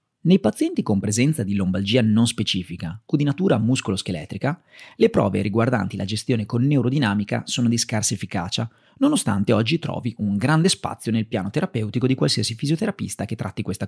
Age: 30-49